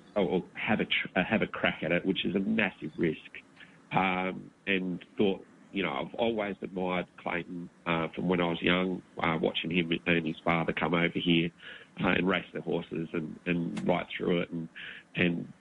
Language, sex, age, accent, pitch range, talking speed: English, male, 30-49, Australian, 85-95 Hz, 190 wpm